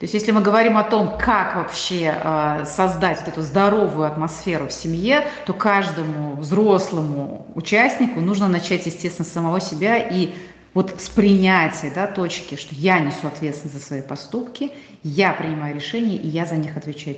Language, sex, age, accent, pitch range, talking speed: Russian, female, 30-49, native, 150-200 Hz, 165 wpm